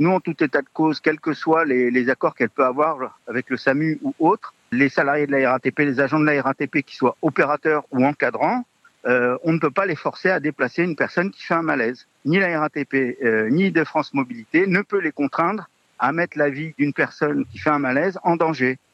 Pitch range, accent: 130-175 Hz, French